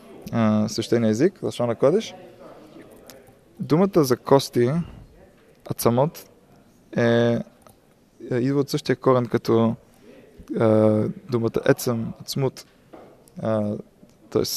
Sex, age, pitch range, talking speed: male, 20-39, 115-130 Hz, 80 wpm